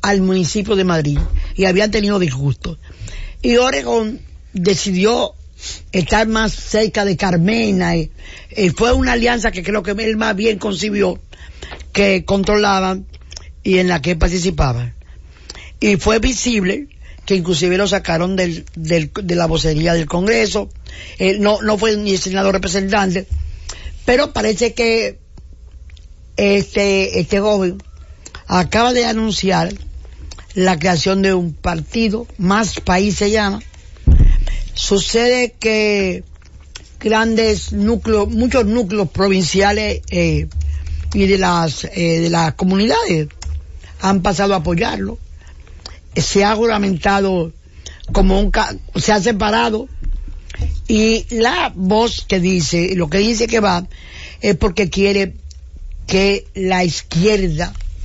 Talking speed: 120 wpm